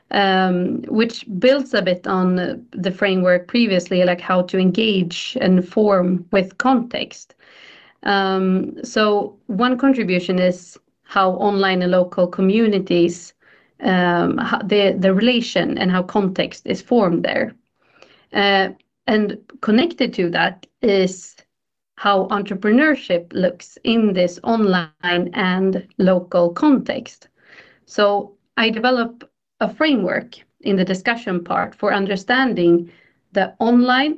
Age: 40-59